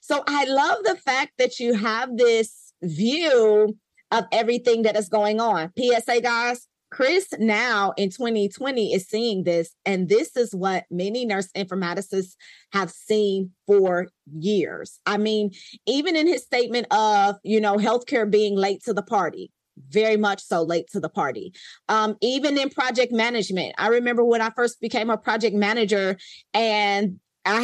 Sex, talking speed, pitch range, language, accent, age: female, 160 wpm, 205-265 Hz, English, American, 30-49